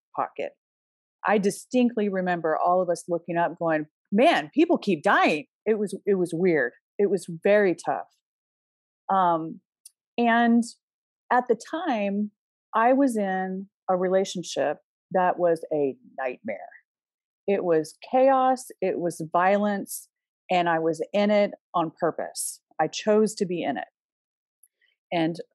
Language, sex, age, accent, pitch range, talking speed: English, female, 40-59, American, 175-240 Hz, 135 wpm